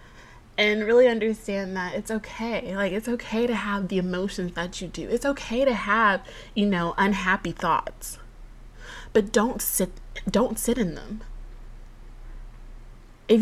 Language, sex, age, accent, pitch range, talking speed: English, female, 20-39, American, 165-235 Hz, 145 wpm